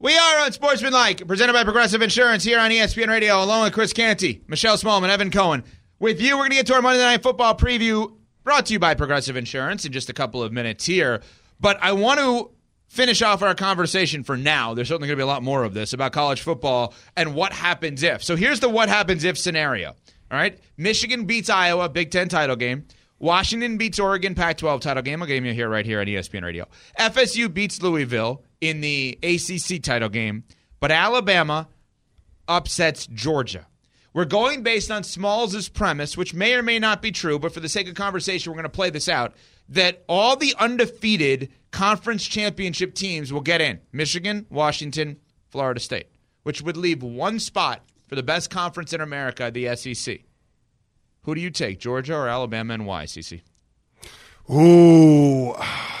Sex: male